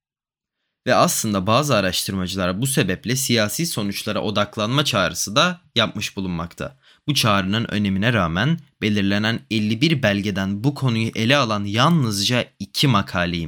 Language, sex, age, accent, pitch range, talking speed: Turkish, male, 20-39, native, 95-130 Hz, 120 wpm